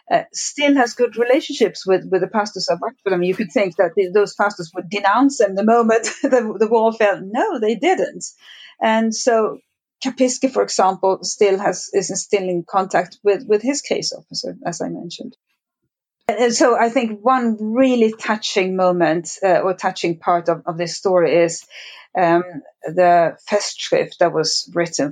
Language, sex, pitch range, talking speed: English, female, 175-225 Hz, 180 wpm